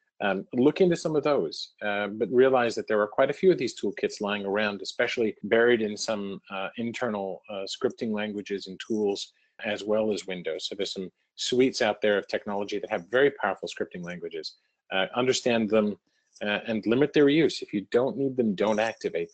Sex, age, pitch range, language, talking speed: male, 40-59, 100-130 Hz, English, 200 wpm